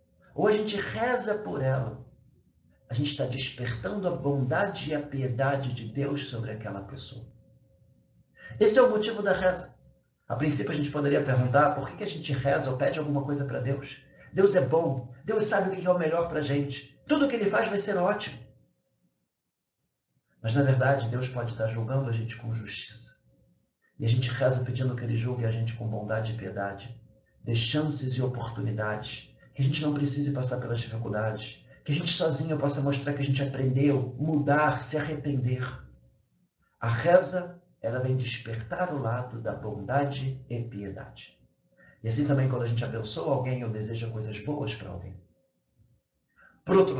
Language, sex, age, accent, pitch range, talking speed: Portuguese, male, 50-69, Brazilian, 115-145 Hz, 175 wpm